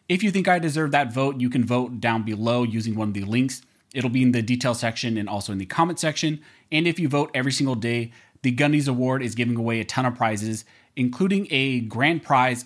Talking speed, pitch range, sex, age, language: 235 wpm, 120-175 Hz, male, 30-49, English